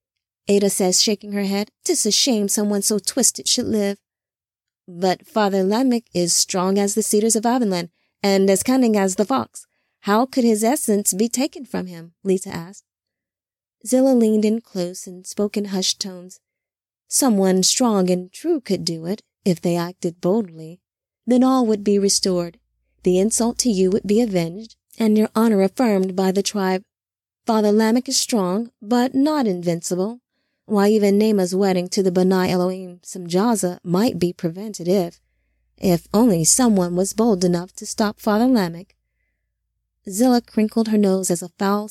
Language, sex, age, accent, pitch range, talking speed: English, female, 20-39, American, 185-225 Hz, 165 wpm